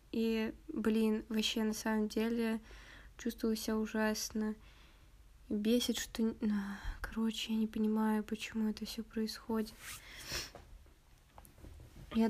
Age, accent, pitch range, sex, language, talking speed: 20-39, native, 205-225 Hz, female, Russian, 100 wpm